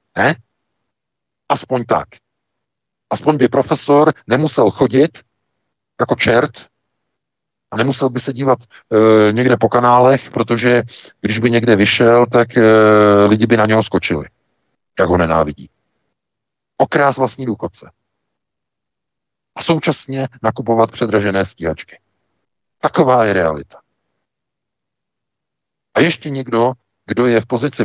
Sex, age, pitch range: male, 50-69, 100-125 Hz